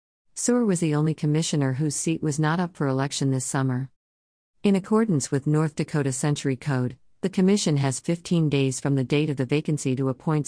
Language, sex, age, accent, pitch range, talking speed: English, female, 50-69, American, 130-160 Hz, 195 wpm